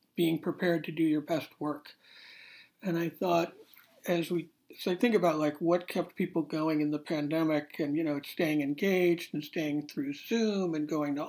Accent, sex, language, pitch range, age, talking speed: American, male, English, 150-180 Hz, 60-79, 195 wpm